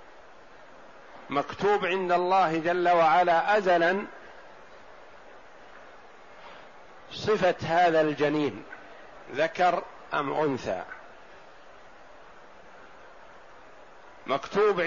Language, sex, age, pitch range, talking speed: Arabic, male, 50-69, 160-190 Hz, 50 wpm